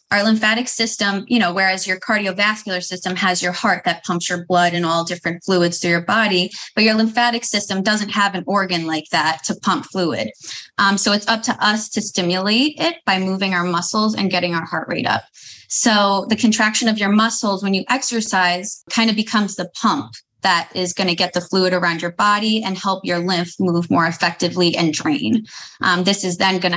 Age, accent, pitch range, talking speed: 20-39, American, 180-215 Hz, 210 wpm